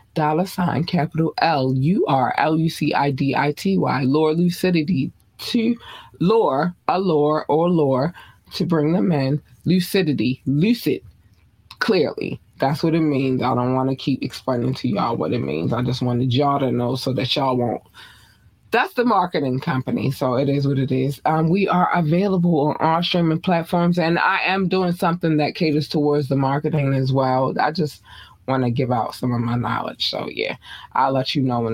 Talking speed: 190 wpm